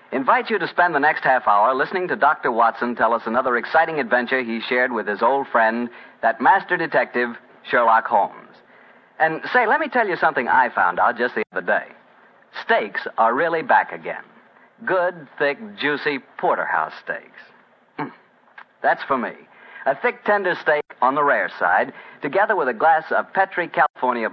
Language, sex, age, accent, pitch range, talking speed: English, male, 50-69, American, 125-180 Hz, 175 wpm